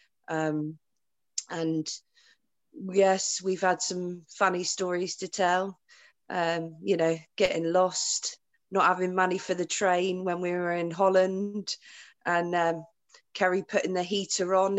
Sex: female